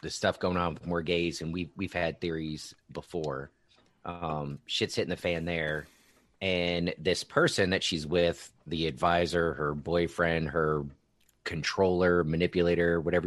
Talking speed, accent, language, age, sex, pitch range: 155 wpm, American, English, 30-49, male, 80-95 Hz